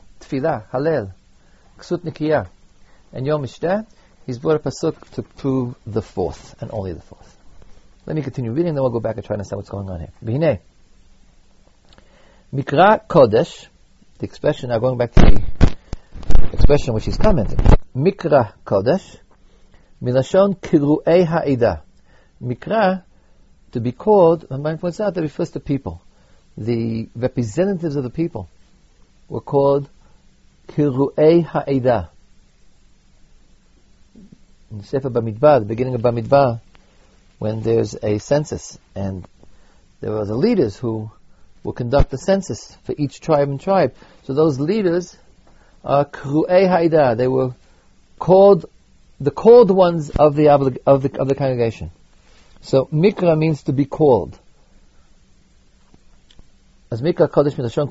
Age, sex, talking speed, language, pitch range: 50-69, male, 130 wpm, English, 105-155 Hz